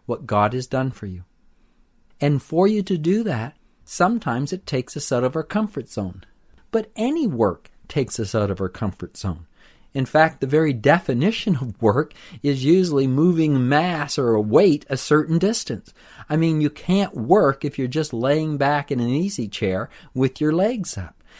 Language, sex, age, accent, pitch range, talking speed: English, male, 50-69, American, 125-180 Hz, 185 wpm